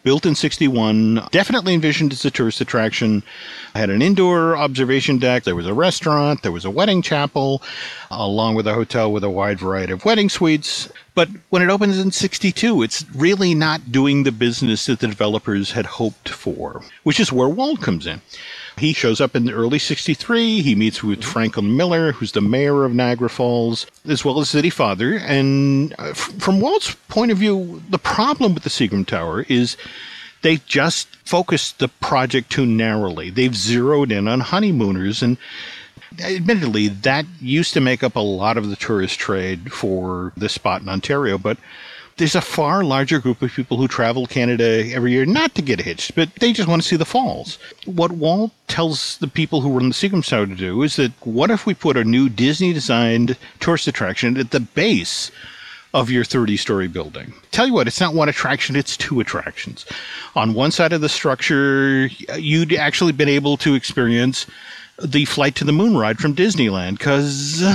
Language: English